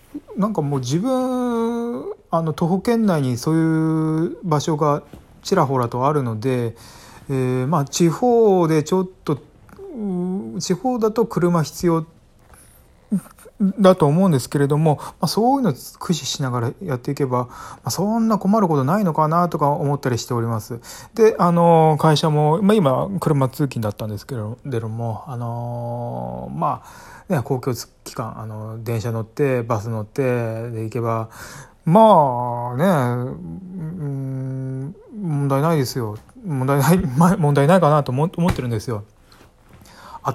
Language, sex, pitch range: Japanese, male, 125-175 Hz